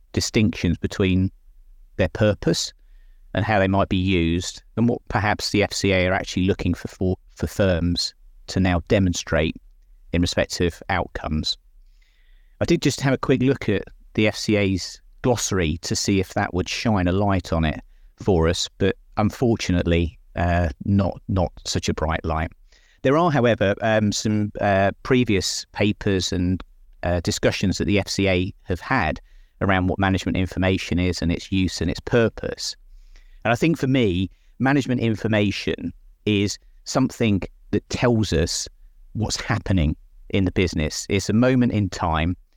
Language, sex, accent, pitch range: English, male, British, 90-110 Hz